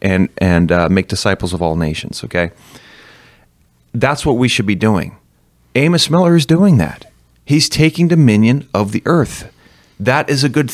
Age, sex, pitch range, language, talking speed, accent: 30-49, male, 105-135 Hz, English, 170 wpm, American